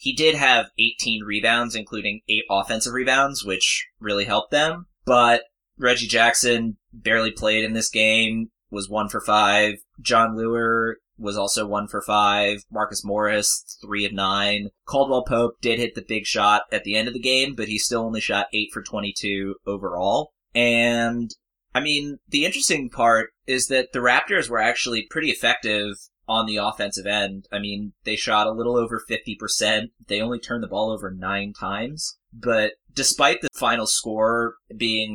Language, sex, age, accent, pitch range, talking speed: English, male, 20-39, American, 100-115 Hz, 170 wpm